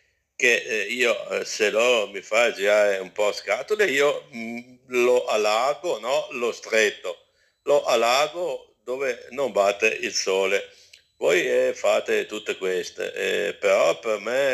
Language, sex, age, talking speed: Italian, male, 60-79, 130 wpm